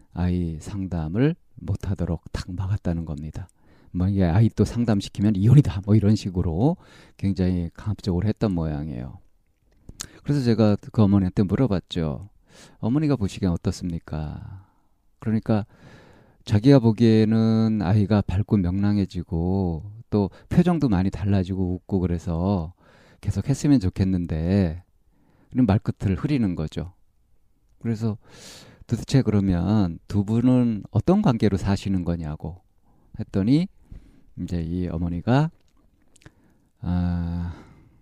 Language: Korean